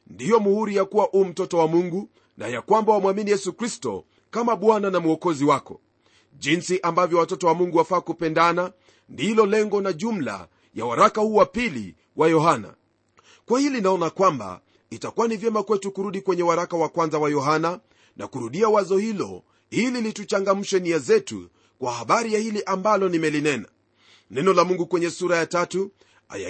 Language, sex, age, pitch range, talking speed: Swahili, male, 40-59, 165-215 Hz, 165 wpm